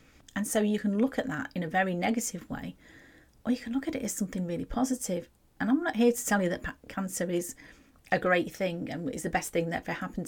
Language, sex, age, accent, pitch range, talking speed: English, female, 40-59, British, 175-220 Hz, 250 wpm